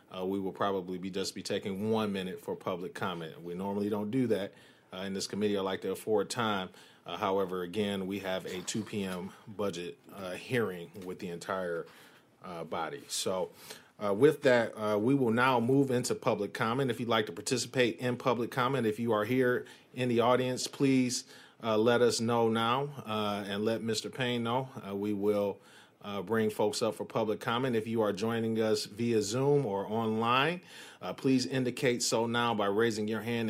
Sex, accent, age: male, American, 40-59